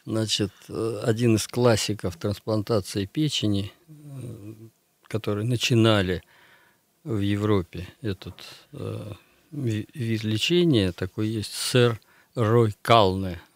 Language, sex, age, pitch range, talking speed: Russian, male, 50-69, 105-125 Hz, 85 wpm